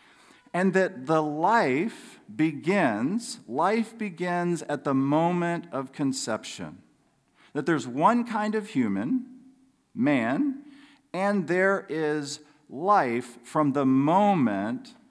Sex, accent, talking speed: male, American, 105 wpm